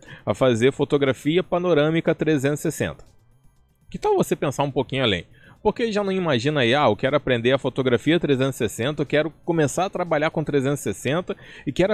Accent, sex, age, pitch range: Brazilian, male, 20-39, 125-165 Hz